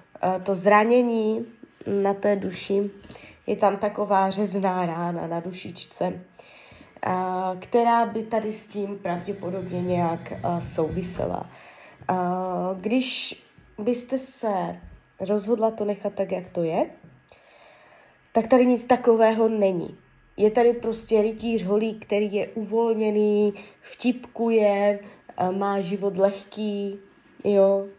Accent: native